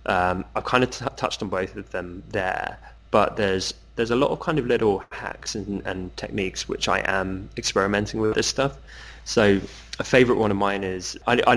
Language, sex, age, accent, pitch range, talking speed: English, male, 20-39, British, 90-105 Hz, 205 wpm